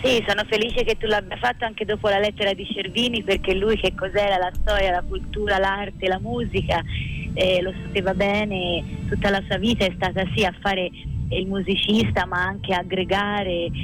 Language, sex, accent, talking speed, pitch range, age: Italian, female, native, 185 wpm, 170-200 Hz, 20-39